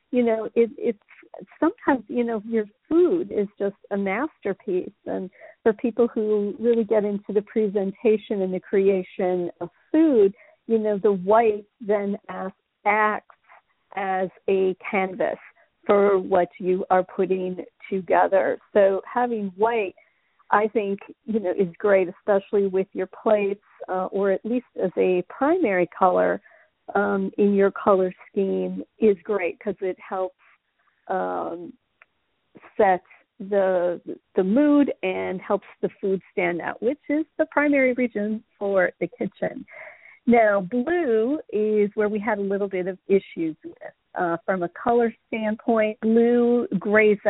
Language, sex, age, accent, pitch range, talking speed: English, female, 50-69, American, 190-230 Hz, 140 wpm